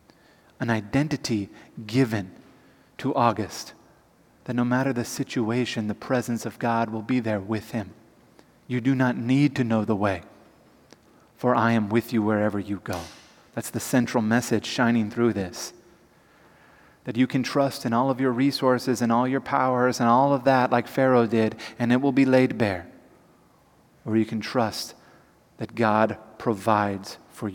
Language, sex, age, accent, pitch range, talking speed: English, male, 30-49, American, 110-125 Hz, 165 wpm